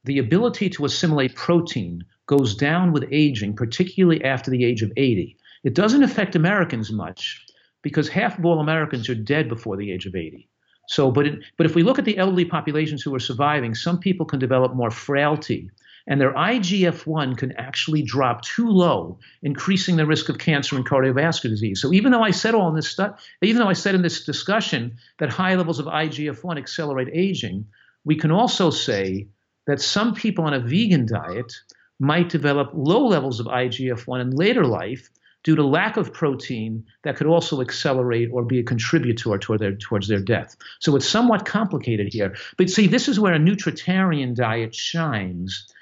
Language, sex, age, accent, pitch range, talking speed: English, male, 50-69, American, 125-175 Hz, 185 wpm